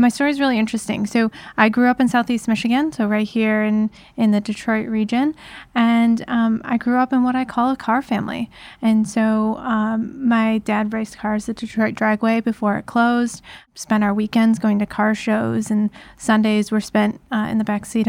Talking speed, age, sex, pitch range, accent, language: 200 wpm, 10-29, female, 220-245 Hz, American, English